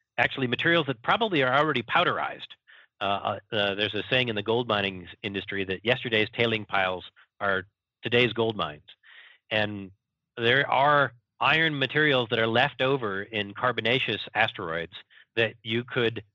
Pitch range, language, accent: 105-130 Hz, English, American